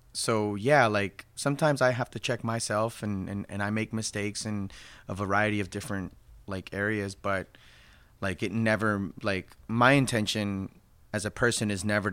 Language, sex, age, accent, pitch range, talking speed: English, male, 30-49, American, 95-105 Hz, 170 wpm